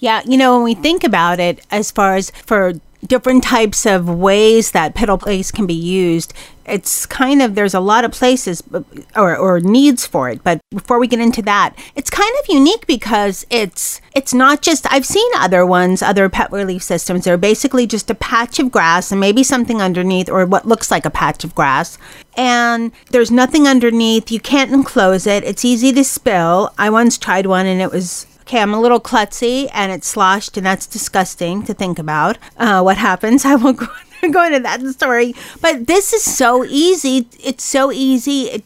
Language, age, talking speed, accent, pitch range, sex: English, 40-59, 200 wpm, American, 195-265 Hz, female